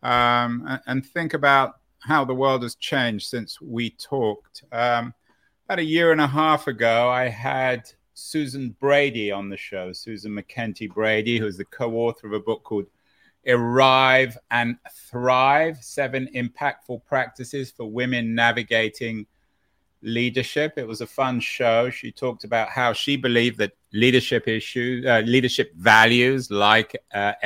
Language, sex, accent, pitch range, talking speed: English, male, British, 105-130 Hz, 145 wpm